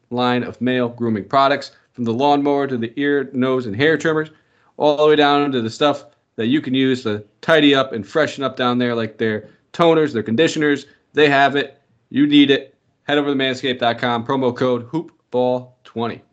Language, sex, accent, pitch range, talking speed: English, male, American, 115-140 Hz, 190 wpm